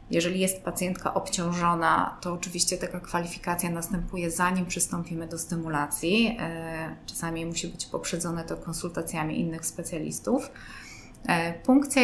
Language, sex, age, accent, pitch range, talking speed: Polish, female, 20-39, native, 170-195 Hz, 110 wpm